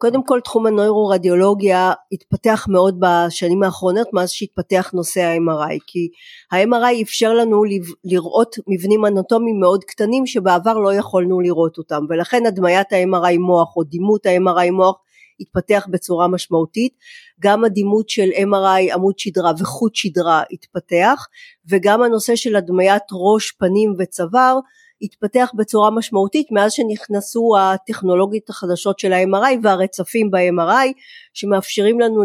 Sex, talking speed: female, 125 wpm